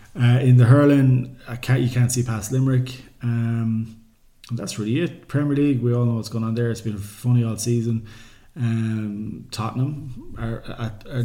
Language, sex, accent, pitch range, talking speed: English, male, Irish, 110-125 Hz, 175 wpm